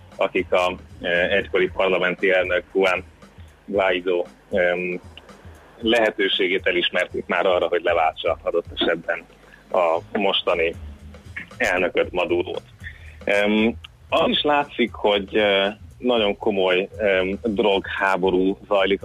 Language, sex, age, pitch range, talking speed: Hungarian, male, 30-49, 90-120 Hz, 100 wpm